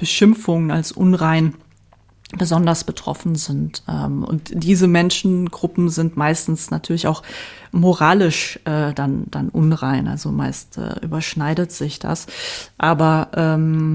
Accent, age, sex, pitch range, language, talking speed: German, 30-49, female, 155-180 Hz, German, 100 wpm